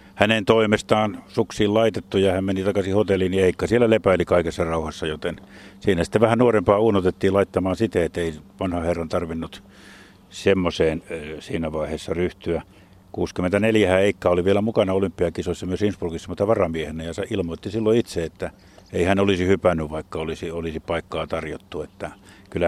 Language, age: Finnish, 50-69